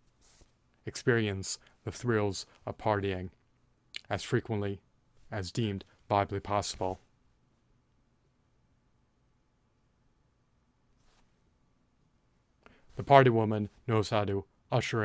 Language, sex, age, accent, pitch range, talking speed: English, male, 30-49, American, 100-115 Hz, 70 wpm